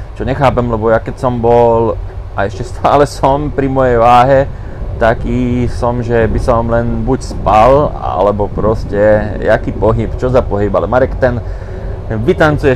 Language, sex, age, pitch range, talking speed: Slovak, male, 30-49, 100-130 Hz, 155 wpm